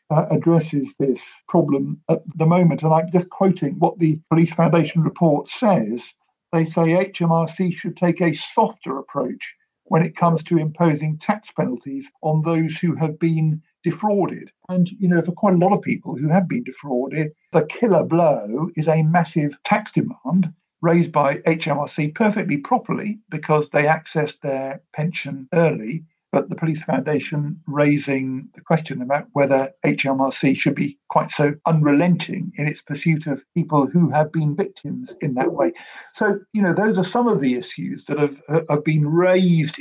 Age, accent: 50-69, British